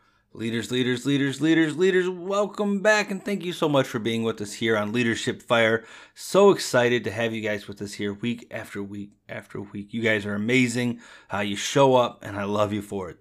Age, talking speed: 30-49, 220 wpm